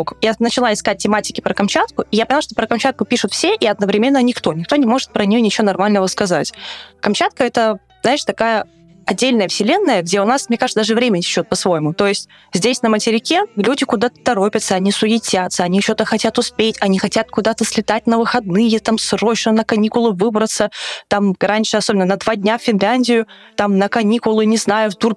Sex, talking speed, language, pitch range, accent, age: female, 195 wpm, Russian, 190-230 Hz, native, 20-39